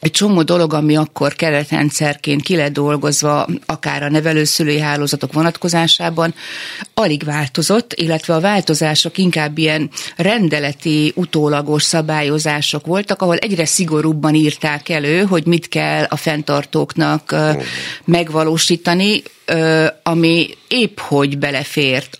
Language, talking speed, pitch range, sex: Hungarian, 105 wpm, 150-175 Hz, female